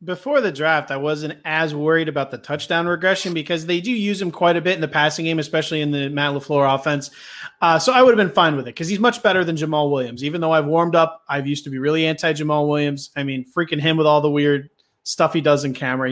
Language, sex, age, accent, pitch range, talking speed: English, male, 30-49, American, 145-180 Hz, 265 wpm